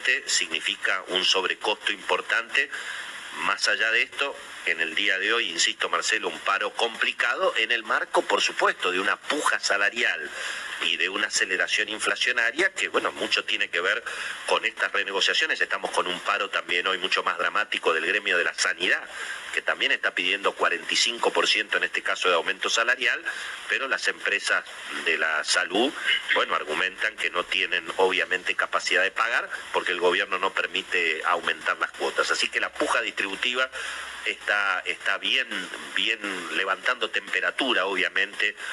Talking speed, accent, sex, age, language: 155 wpm, Argentinian, male, 40-59, Spanish